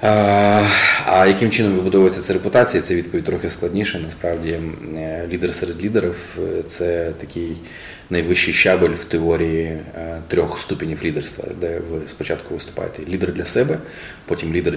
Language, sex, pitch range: Ukrainian, male, 85-95 Hz